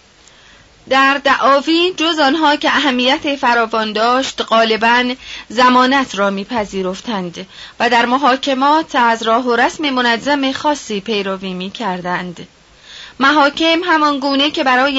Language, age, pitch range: Persian, 30-49, 225-285 Hz